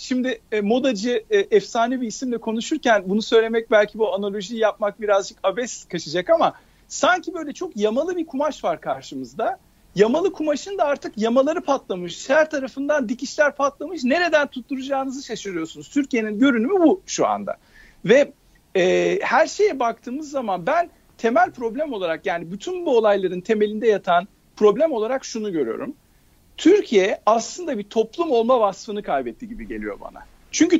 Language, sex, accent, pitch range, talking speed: Turkish, male, native, 205-295 Hz, 140 wpm